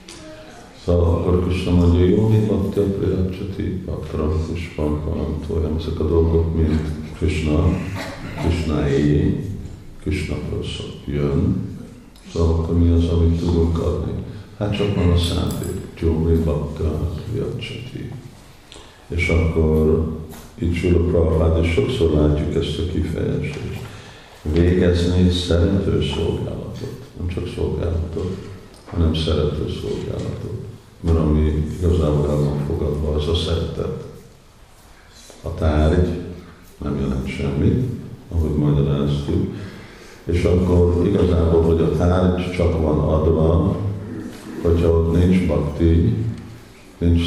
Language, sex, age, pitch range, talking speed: Hungarian, male, 50-69, 75-90 Hz, 110 wpm